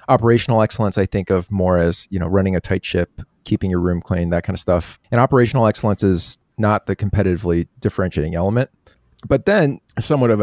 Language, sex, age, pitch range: English, male, 30-49, 90-110 Hz